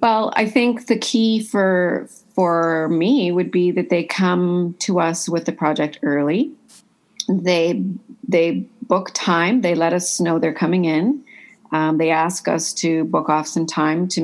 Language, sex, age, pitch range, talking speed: English, female, 40-59, 160-205 Hz, 170 wpm